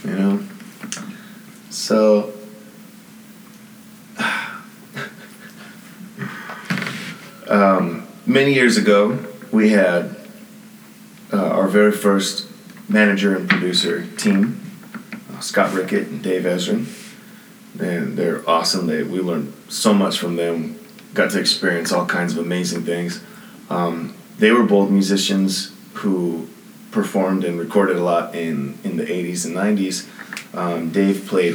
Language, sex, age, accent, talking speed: English, male, 30-49, American, 115 wpm